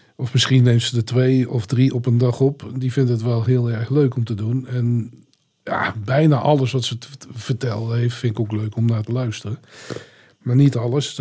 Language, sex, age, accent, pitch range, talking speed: Dutch, male, 50-69, Dutch, 120-145 Hz, 220 wpm